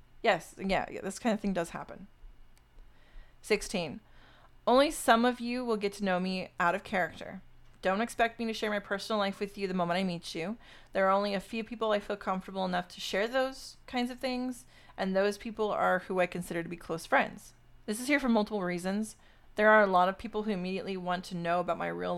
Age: 30-49